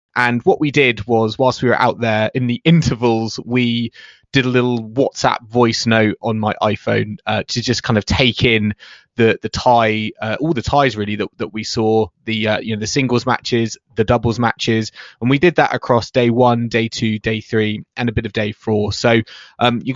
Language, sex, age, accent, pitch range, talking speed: English, male, 20-39, British, 110-130 Hz, 215 wpm